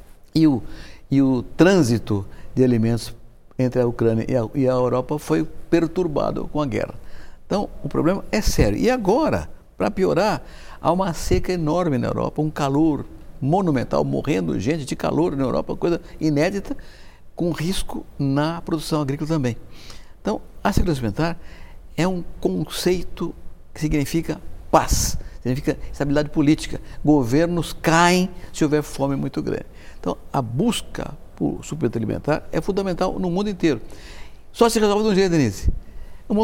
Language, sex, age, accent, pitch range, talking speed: English, male, 60-79, Brazilian, 125-170 Hz, 145 wpm